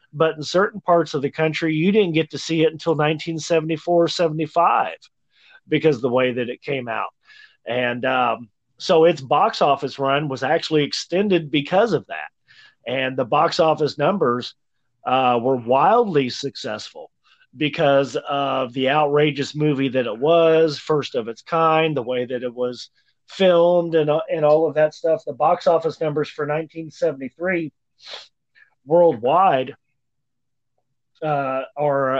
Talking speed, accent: 150 wpm, American